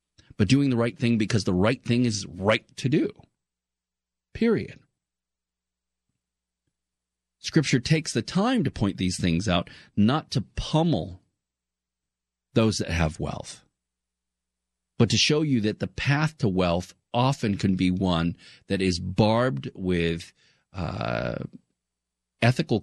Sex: male